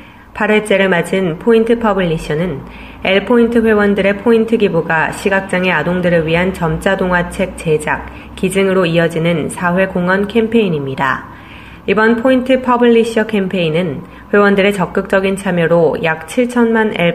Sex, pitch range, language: female, 165-200 Hz, Korean